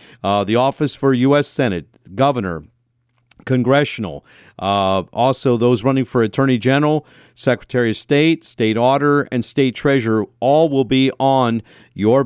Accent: American